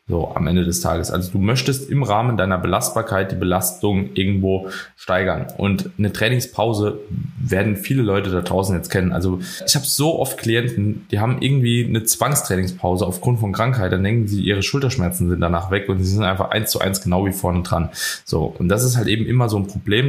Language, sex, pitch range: German, male, 95-115 Hz